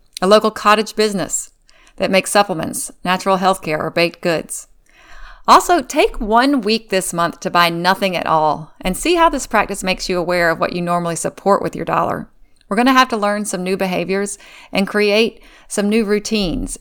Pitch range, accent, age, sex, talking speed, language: 180-225 Hz, American, 40-59, female, 195 wpm, English